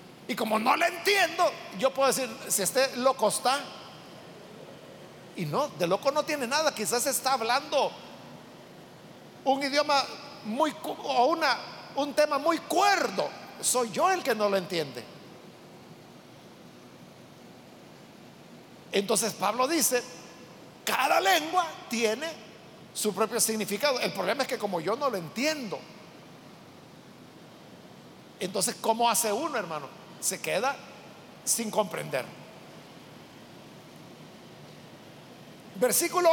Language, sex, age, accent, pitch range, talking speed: Spanish, male, 50-69, Mexican, 215-280 Hz, 110 wpm